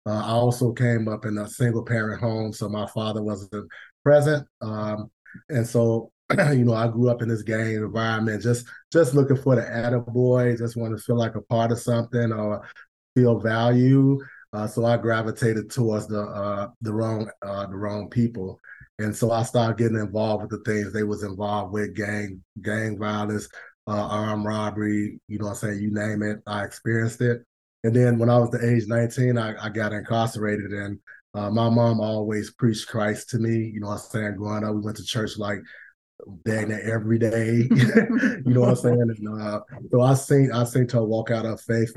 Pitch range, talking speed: 105-120 Hz, 205 wpm